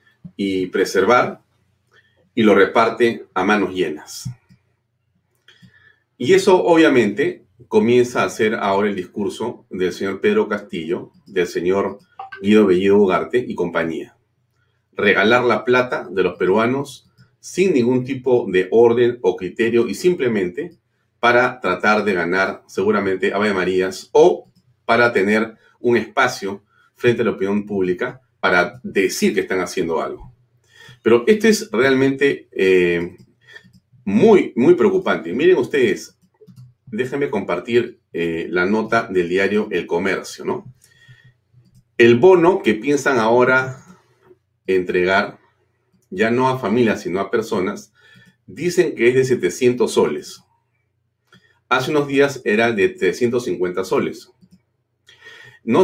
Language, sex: Spanish, male